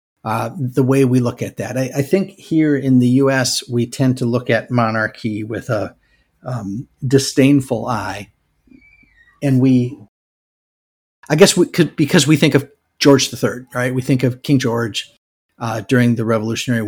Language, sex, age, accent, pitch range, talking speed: English, male, 50-69, American, 115-140 Hz, 165 wpm